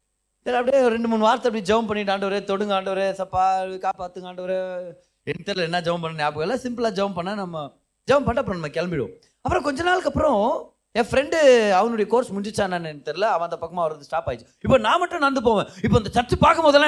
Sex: male